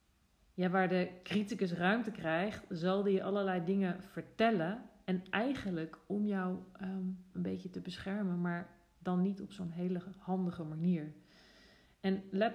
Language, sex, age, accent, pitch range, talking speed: Dutch, female, 40-59, Dutch, 170-195 Hz, 135 wpm